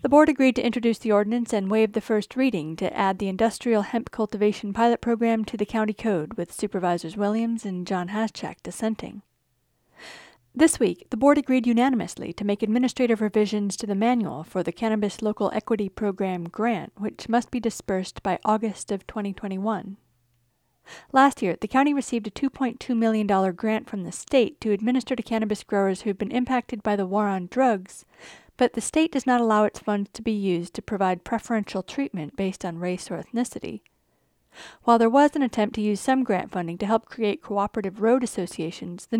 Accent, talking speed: American, 185 wpm